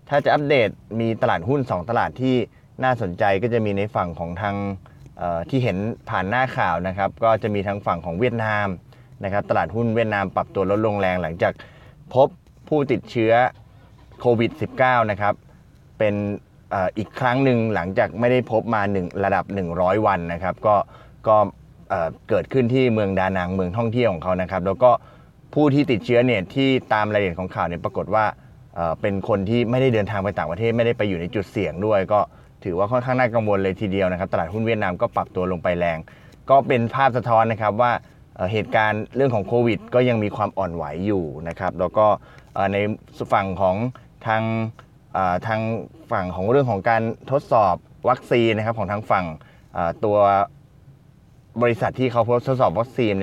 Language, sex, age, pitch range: Thai, male, 20-39, 100-125 Hz